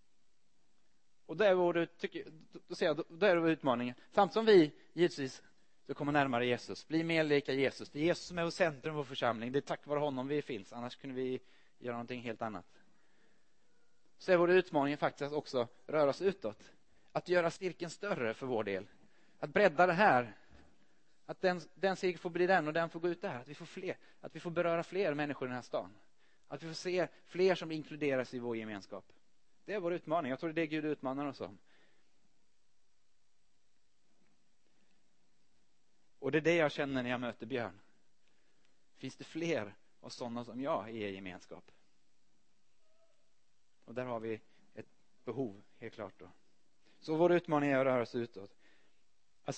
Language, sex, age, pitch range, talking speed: Swedish, male, 30-49, 125-170 Hz, 185 wpm